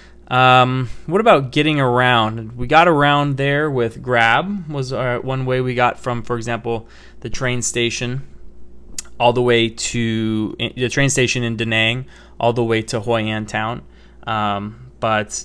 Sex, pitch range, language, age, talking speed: male, 110-130 Hz, English, 20-39, 165 wpm